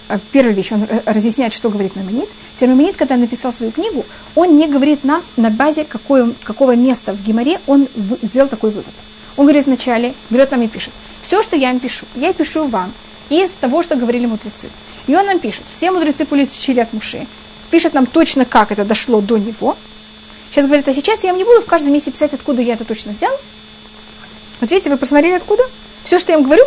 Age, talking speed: 30-49, 205 wpm